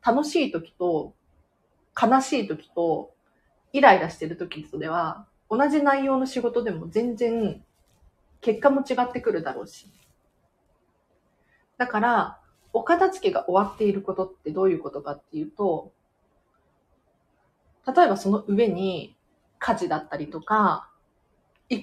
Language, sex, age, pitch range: Japanese, female, 40-59, 175-260 Hz